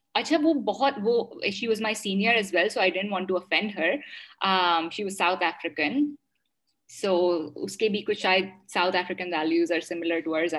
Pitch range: 185-280 Hz